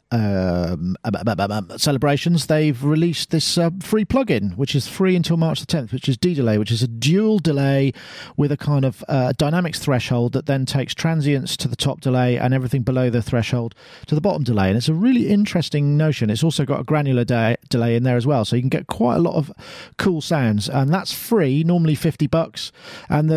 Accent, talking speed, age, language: British, 210 wpm, 40-59, English